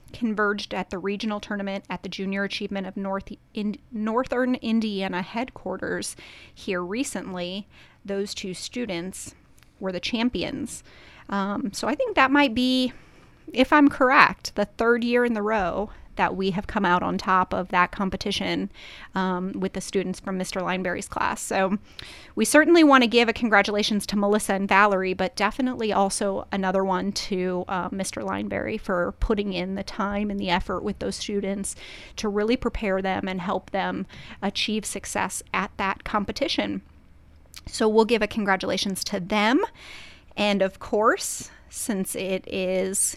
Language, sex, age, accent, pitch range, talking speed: English, female, 30-49, American, 195-230 Hz, 155 wpm